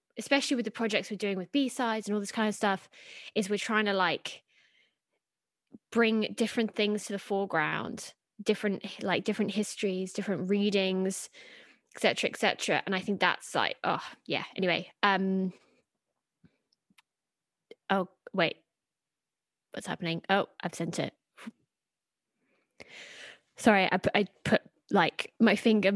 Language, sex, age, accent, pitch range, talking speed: English, female, 20-39, British, 190-225 Hz, 140 wpm